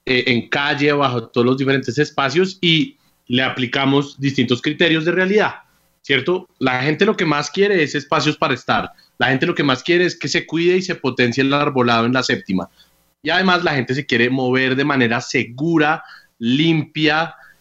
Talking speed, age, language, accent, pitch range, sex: 185 wpm, 30-49, Spanish, Colombian, 115-145 Hz, male